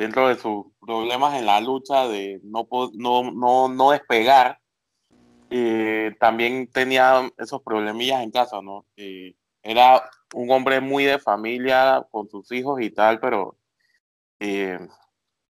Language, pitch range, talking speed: Spanish, 105-130 Hz, 135 wpm